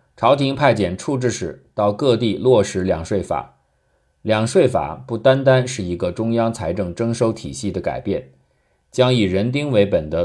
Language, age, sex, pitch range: Chinese, 50-69, male, 95-130 Hz